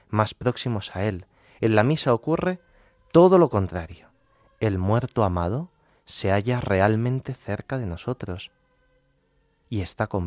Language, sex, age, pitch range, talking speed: Spanish, male, 30-49, 95-125 Hz, 135 wpm